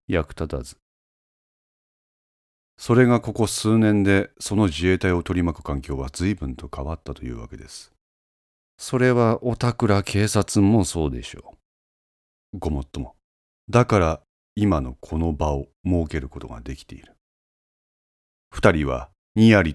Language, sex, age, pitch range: Japanese, male, 40-59, 70-100 Hz